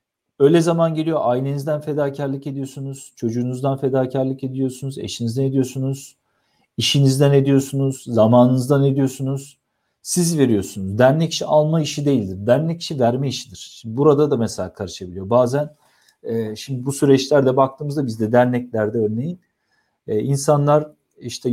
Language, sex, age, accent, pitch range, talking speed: Turkish, male, 50-69, native, 120-155 Hz, 115 wpm